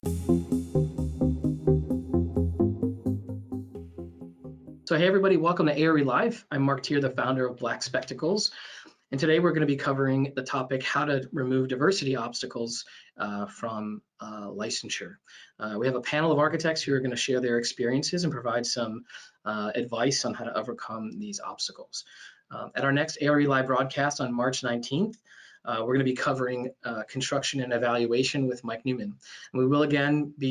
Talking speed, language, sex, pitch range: 165 wpm, English, male, 115-145 Hz